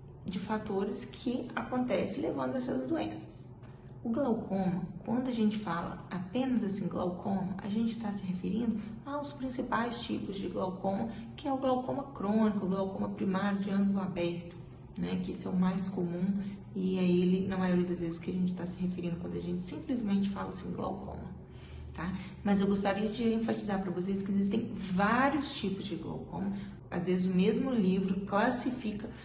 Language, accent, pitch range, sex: Portuguese, Brazilian, 180-215 Hz, female